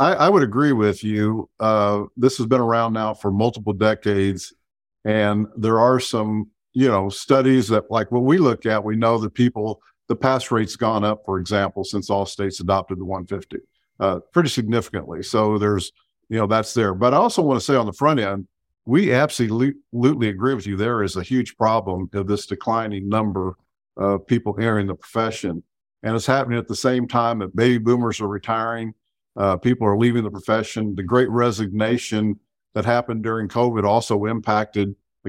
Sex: male